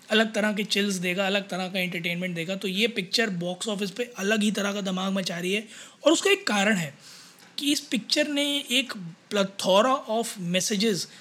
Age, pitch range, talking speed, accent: 20-39, 180-225 Hz, 200 wpm, native